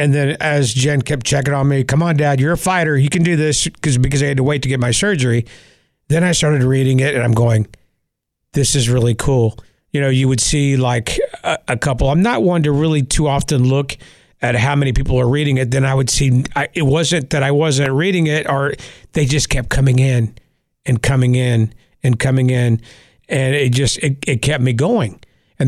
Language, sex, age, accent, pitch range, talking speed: English, male, 50-69, American, 125-145 Hz, 220 wpm